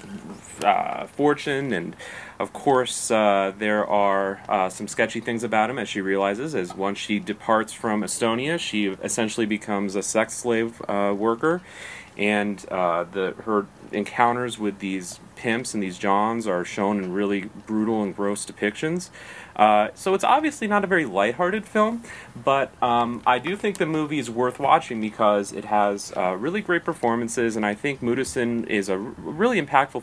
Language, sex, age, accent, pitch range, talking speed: English, male, 30-49, American, 100-125 Hz, 165 wpm